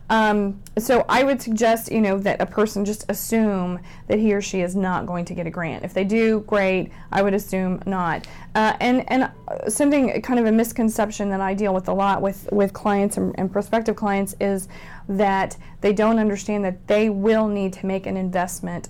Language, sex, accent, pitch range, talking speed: English, female, American, 190-225 Hz, 205 wpm